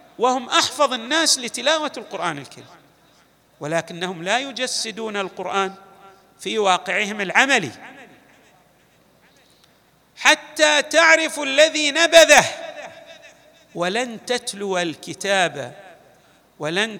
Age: 50-69